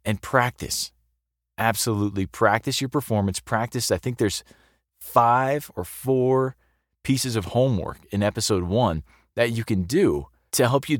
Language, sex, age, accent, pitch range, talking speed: English, male, 30-49, American, 95-125 Hz, 140 wpm